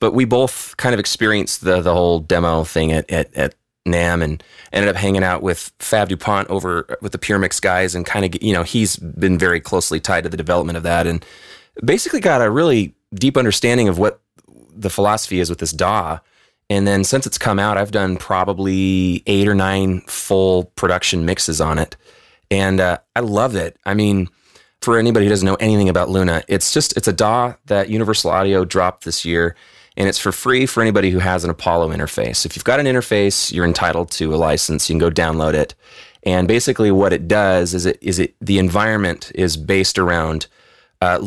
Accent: American